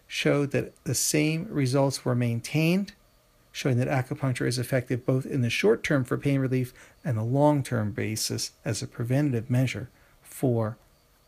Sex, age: male, 40-59